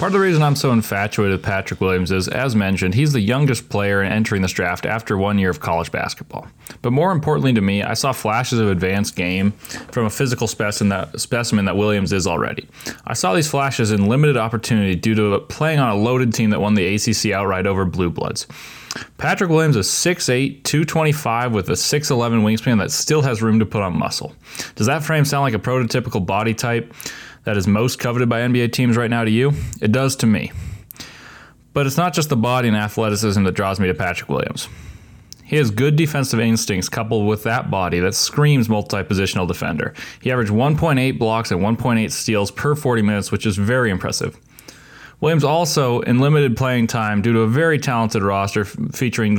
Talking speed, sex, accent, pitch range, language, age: 195 wpm, male, American, 105-130 Hz, English, 20-39